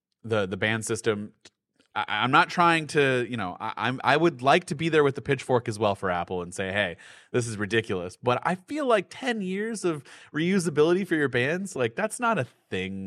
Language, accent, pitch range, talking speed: English, American, 110-165 Hz, 215 wpm